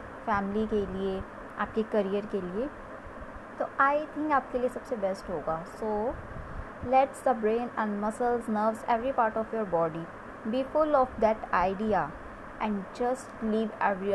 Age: 20-39